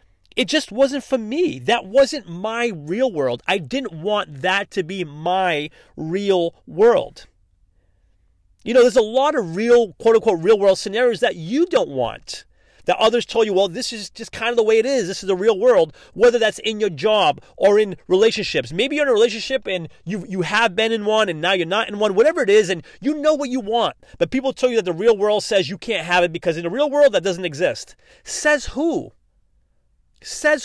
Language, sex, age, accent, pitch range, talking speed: English, male, 30-49, American, 180-270 Hz, 220 wpm